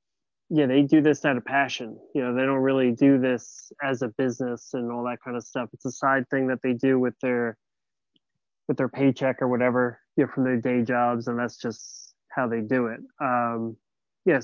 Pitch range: 125-150 Hz